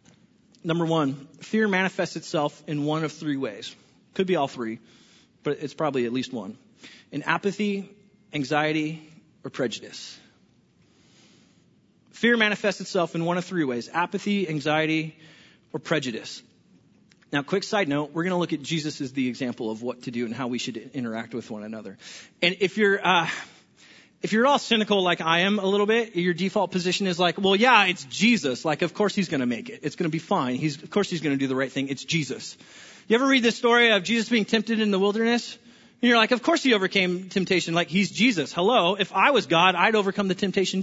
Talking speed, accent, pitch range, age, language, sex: 210 wpm, American, 155-220 Hz, 30-49, English, male